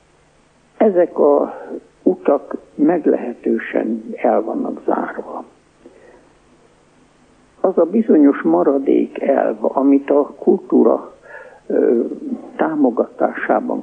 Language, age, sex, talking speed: Hungarian, 60-79, male, 70 wpm